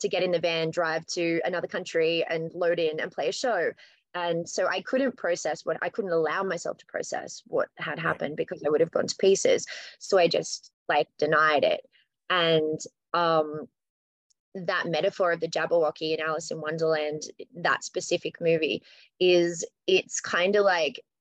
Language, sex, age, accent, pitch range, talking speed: English, female, 20-39, Australian, 165-195 Hz, 180 wpm